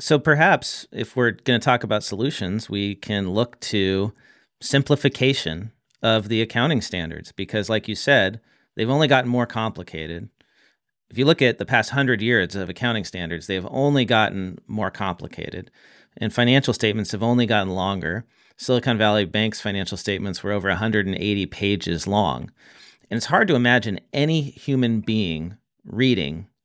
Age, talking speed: 40-59, 155 wpm